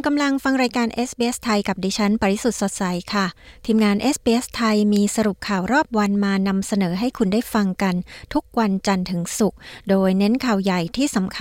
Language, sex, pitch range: Thai, female, 190-230 Hz